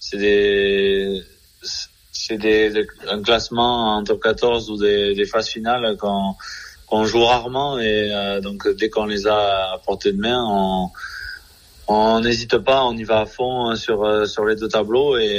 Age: 20-39